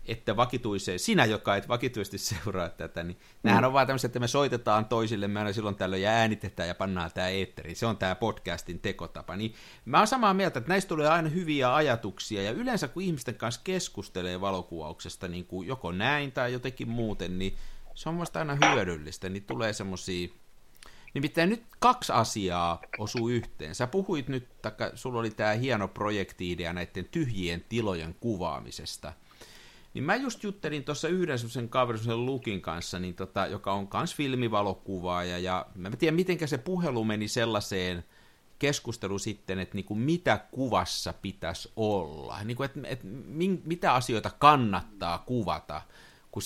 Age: 50-69